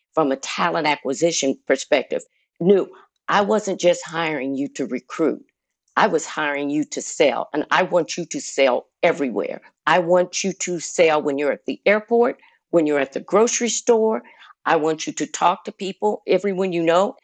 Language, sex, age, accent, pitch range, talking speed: English, female, 50-69, American, 155-190 Hz, 180 wpm